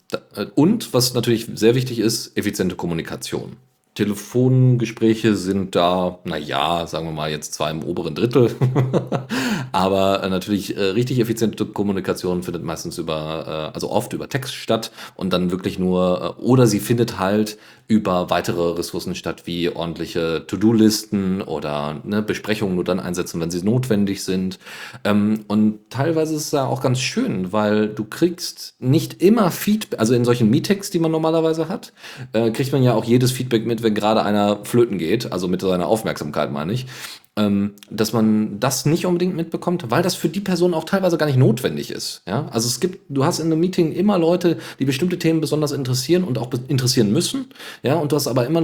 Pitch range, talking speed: 100-155 Hz, 175 wpm